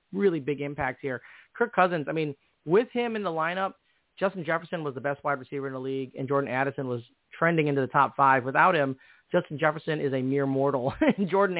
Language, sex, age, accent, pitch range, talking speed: English, male, 30-49, American, 140-170 Hz, 215 wpm